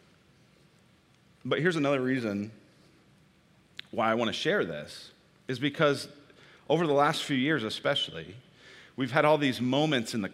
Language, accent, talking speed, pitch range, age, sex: English, American, 145 wpm, 100-120 Hz, 30-49, male